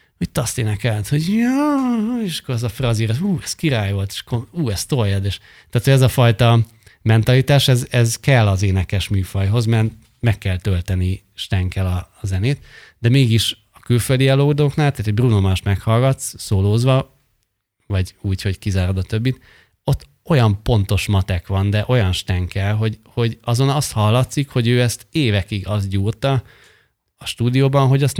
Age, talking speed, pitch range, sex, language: 30-49, 165 wpm, 100-120 Hz, male, Hungarian